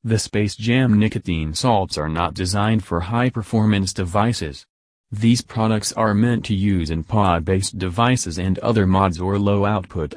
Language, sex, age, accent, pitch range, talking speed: English, male, 30-49, American, 90-115 Hz, 150 wpm